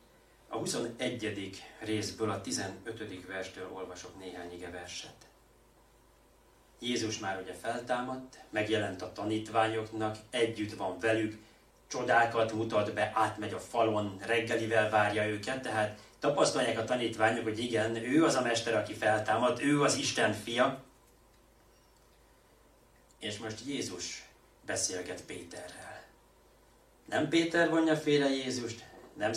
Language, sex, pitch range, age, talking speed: Hungarian, male, 105-125 Hz, 30-49, 110 wpm